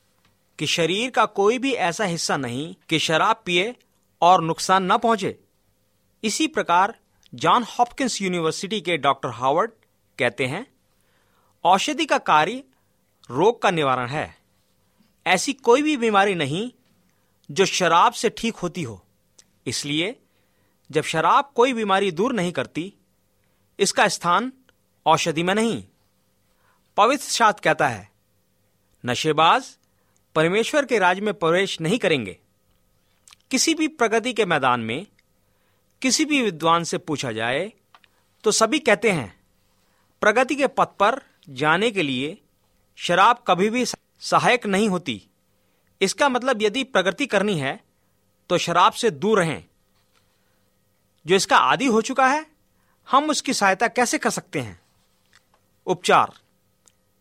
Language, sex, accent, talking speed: Hindi, male, native, 130 wpm